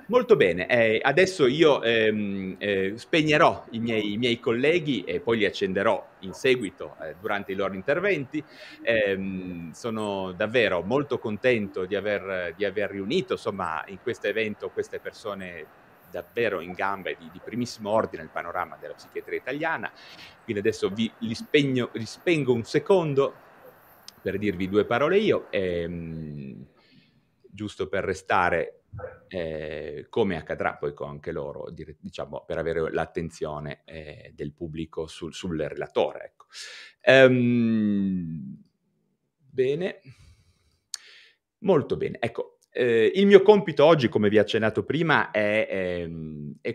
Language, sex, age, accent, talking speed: Italian, male, 30-49, native, 135 wpm